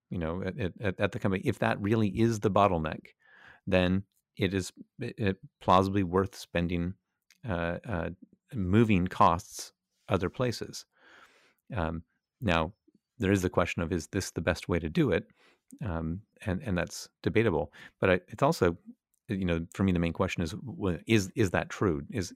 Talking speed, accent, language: 165 wpm, American, English